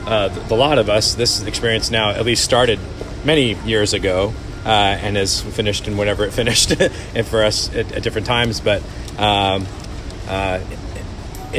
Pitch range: 95-115 Hz